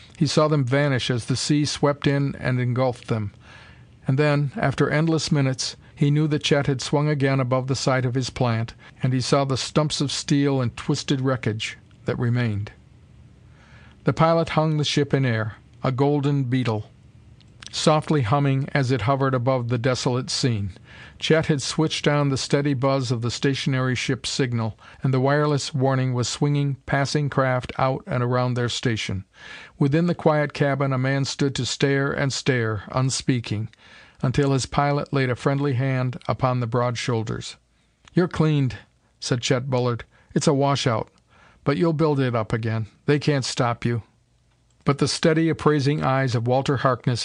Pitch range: 125-145 Hz